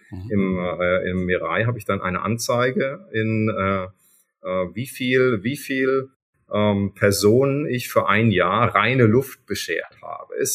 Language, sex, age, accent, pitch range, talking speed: German, male, 30-49, German, 100-120 Hz, 155 wpm